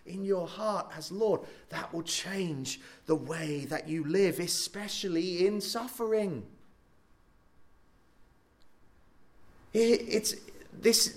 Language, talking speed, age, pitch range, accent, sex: English, 90 wpm, 30-49, 155-215 Hz, British, male